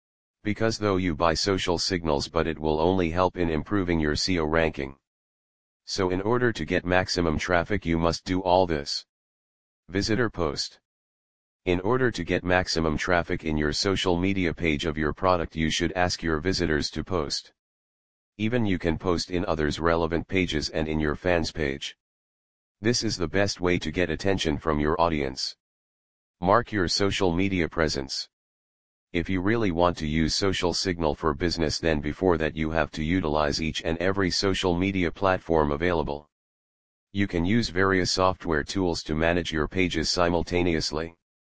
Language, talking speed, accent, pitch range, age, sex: English, 165 wpm, American, 80-95 Hz, 40-59, male